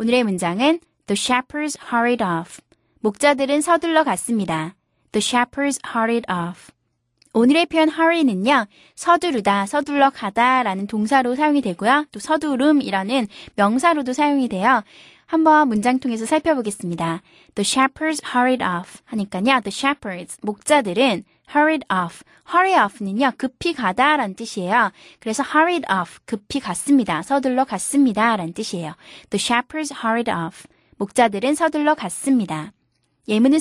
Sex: female